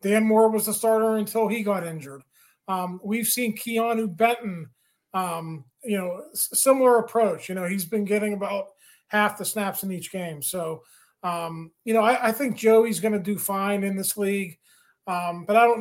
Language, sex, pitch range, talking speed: English, male, 180-215 Hz, 190 wpm